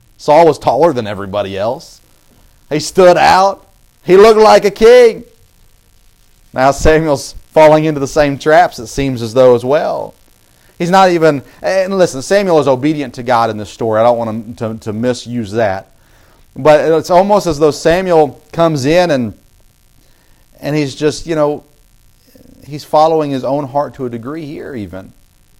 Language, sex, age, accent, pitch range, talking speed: English, male, 40-59, American, 110-155 Hz, 170 wpm